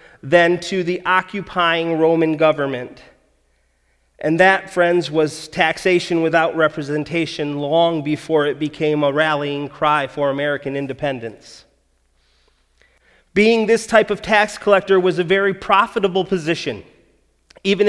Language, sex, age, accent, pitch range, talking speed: English, male, 30-49, American, 150-185 Hz, 115 wpm